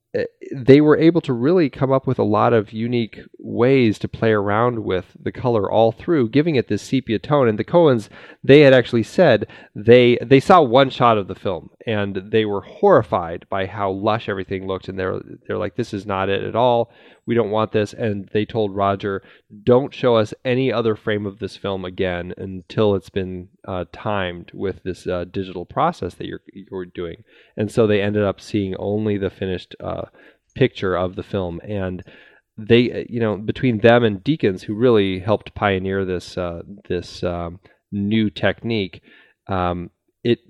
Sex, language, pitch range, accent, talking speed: male, English, 95-120 Hz, American, 190 wpm